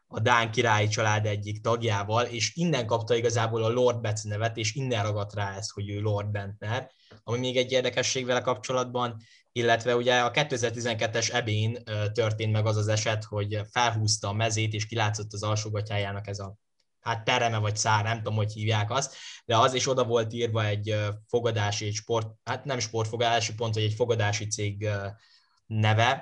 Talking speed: 175 wpm